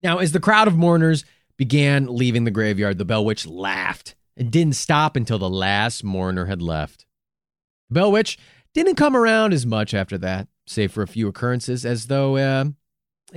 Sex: male